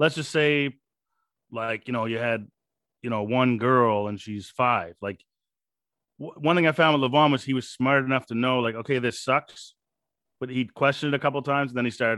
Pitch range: 115-140 Hz